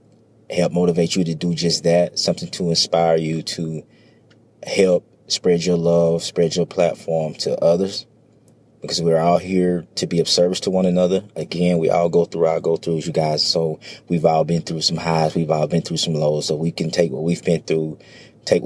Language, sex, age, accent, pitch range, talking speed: English, male, 30-49, American, 80-95 Hz, 205 wpm